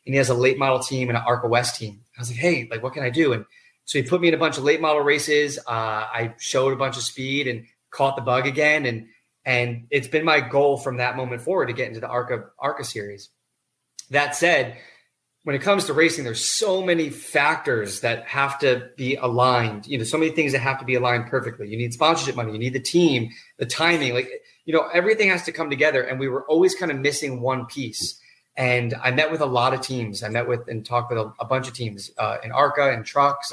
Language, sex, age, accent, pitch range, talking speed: English, male, 30-49, American, 120-145 Hz, 250 wpm